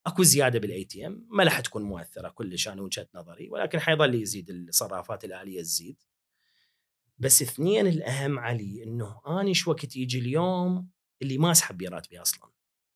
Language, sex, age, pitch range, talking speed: Arabic, male, 30-49, 120-170 Hz, 150 wpm